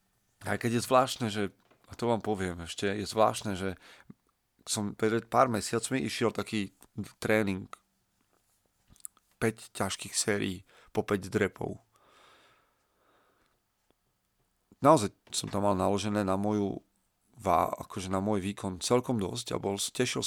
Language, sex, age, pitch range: Slovak, male, 40-59, 95-110 Hz